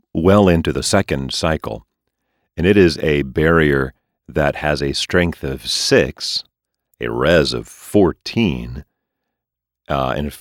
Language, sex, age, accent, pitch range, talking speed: English, male, 40-59, American, 70-95 Hz, 135 wpm